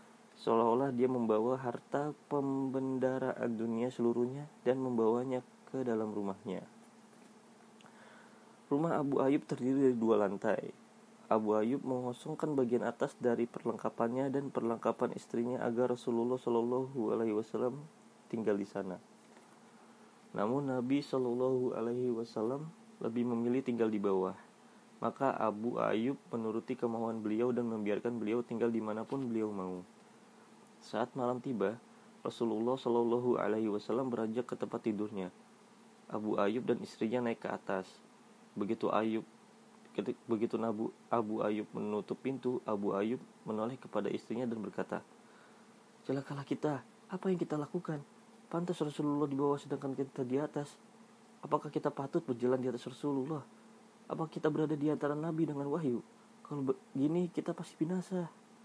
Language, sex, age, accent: Indonesian, male, 30-49, native